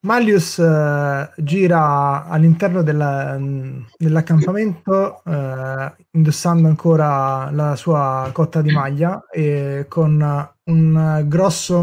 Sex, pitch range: male, 135-160 Hz